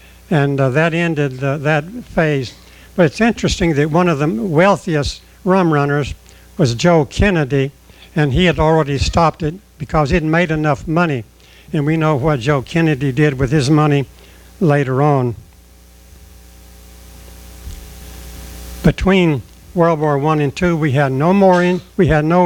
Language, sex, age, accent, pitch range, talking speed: English, male, 60-79, American, 135-170 Hz, 150 wpm